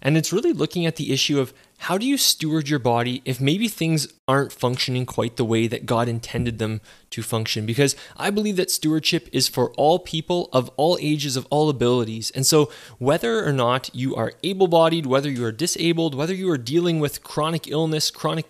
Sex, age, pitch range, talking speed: male, 20-39, 125-165 Hz, 205 wpm